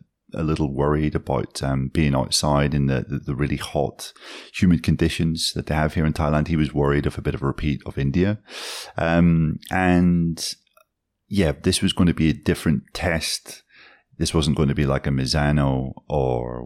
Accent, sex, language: British, male, English